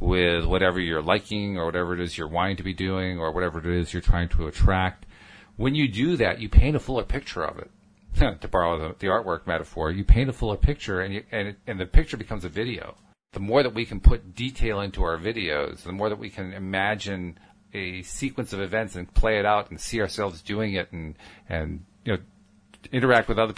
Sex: male